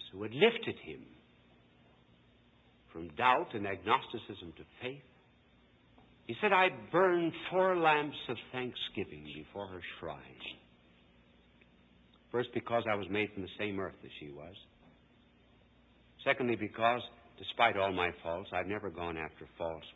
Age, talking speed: 60-79, 130 wpm